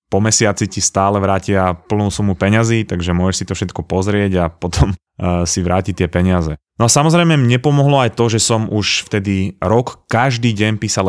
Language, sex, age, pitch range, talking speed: Slovak, male, 20-39, 90-115 Hz, 190 wpm